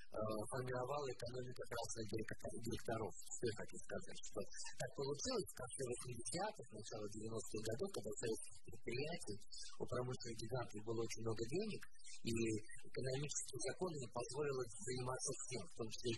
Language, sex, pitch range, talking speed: Russian, male, 110-135 Hz, 120 wpm